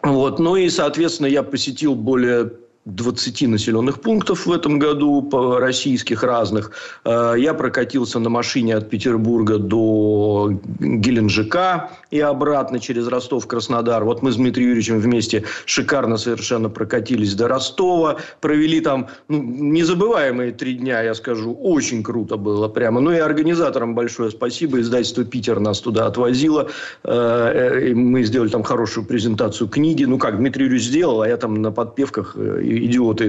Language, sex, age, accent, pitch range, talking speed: Russian, male, 50-69, native, 115-145 Hz, 140 wpm